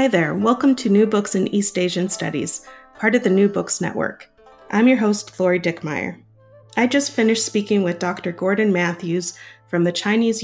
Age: 30-49